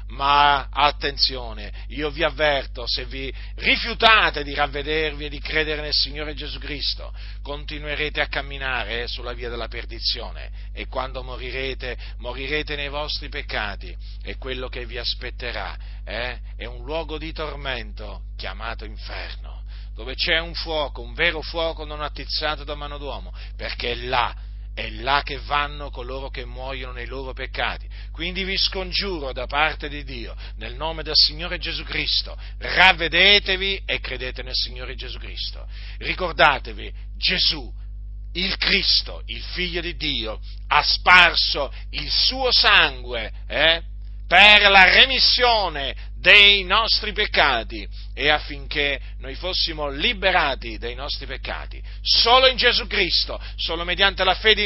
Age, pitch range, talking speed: 40-59, 110-155 Hz, 135 wpm